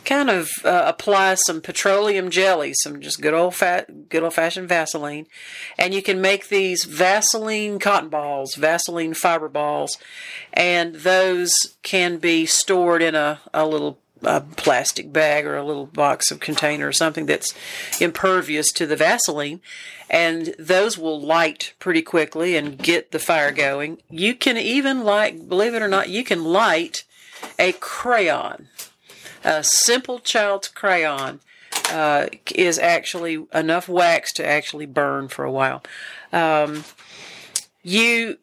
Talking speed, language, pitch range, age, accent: 145 wpm, English, 160-200 Hz, 50-69, American